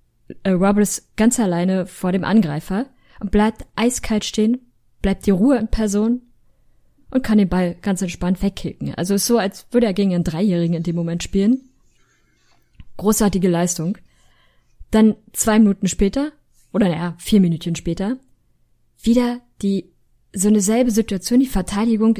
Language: German